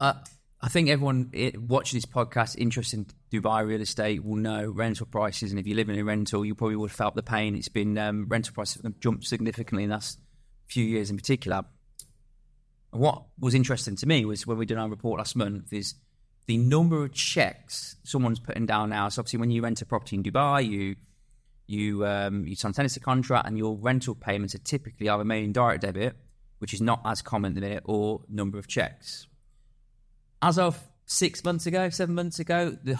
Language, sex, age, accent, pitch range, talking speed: English, male, 20-39, British, 105-130 Hz, 205 wpm